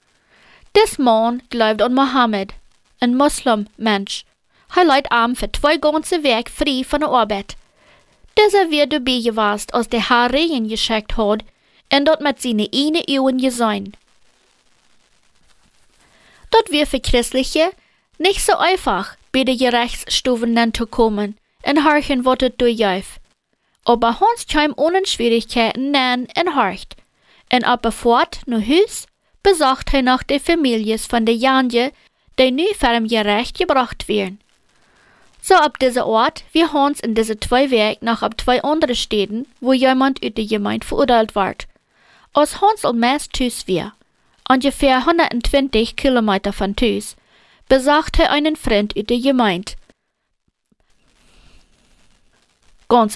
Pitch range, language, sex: 230-295 Hz, English, female